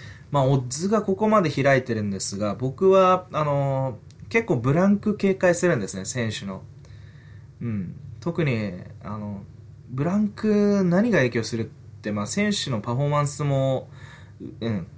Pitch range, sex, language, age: 110-150 Hz, male, Japanese, 20-39